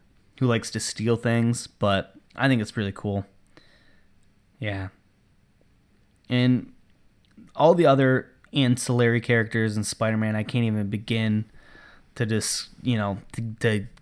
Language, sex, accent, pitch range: English, male, American, 100-125 Hz